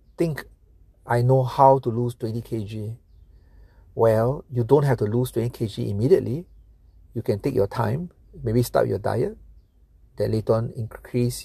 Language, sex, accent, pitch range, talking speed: English, male, Malaysian, 85-130 Hz, 145 wpm